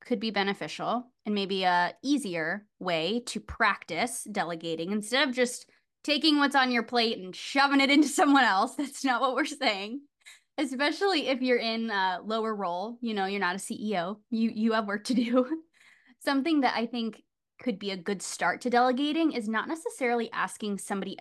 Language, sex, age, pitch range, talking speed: English, female, 20-39, 200-270 Hz, 185 wpm